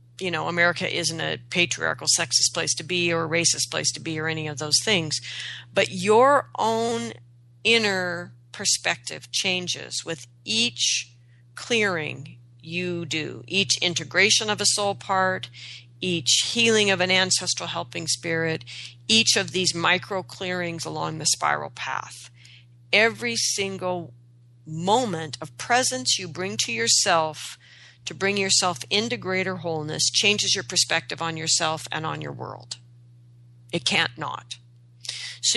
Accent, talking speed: American, 140 wpm